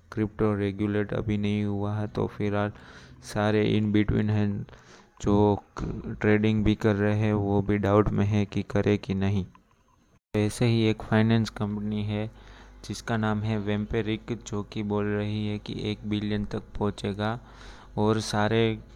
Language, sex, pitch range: Hindi, male, 105-110 Hz